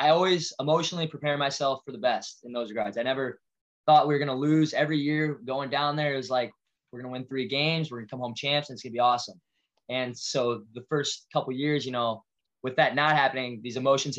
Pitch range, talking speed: 125-150 Hz, 255 wpm